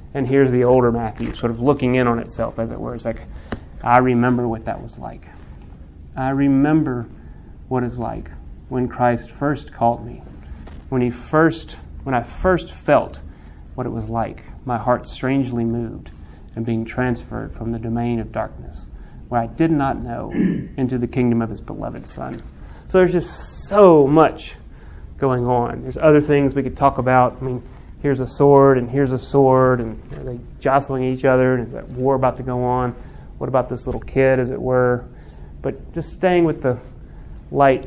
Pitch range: 115-135 Hz